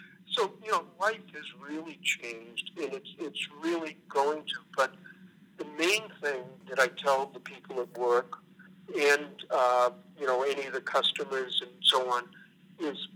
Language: English